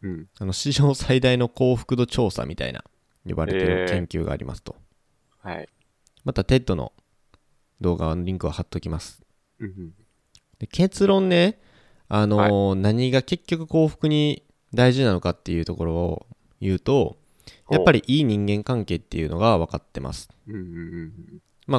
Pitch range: 90-130 Hz